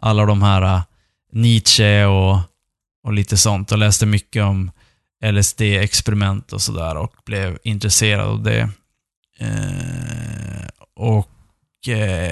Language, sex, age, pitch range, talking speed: Swedish, male, 20-39, 105-125 Hz, 100 wpm